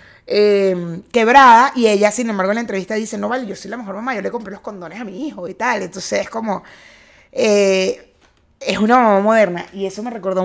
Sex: female